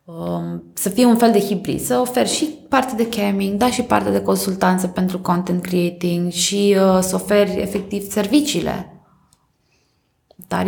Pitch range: 180-240 Hz